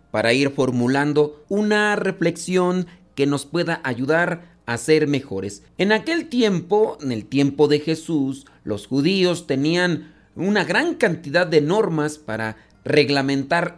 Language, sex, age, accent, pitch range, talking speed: Spanish, male, 40-59, Mexican, 135-175 Hz, 130 wpm